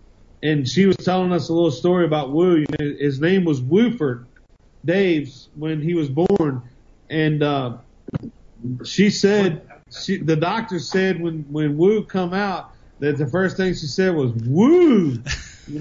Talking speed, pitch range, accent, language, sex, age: 165 wpm, 145-180 Hz, American, English, male, 40-59